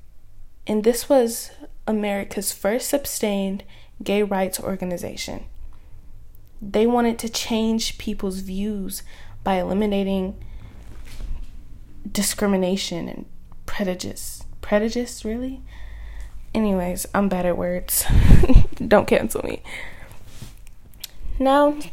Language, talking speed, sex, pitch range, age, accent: English, 85 wpm, female, 190-240 Hz, 10-29, American